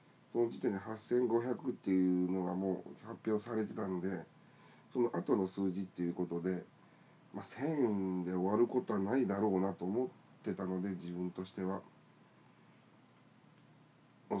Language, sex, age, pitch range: Japanese, male, 40-59, 95-120 Hz